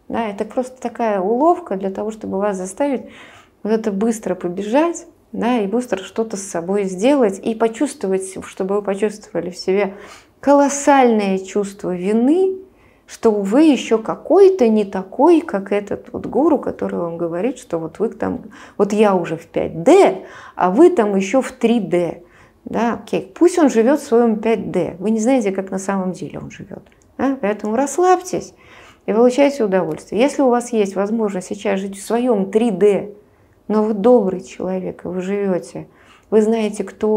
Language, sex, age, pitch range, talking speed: Russian, female, 30-49, 195-245 Hz, 165 wpm